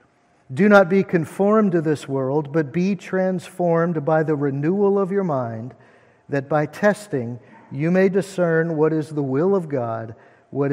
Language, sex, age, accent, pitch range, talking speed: English, male, 50-69, American, 145-180 Hz, 160 wpm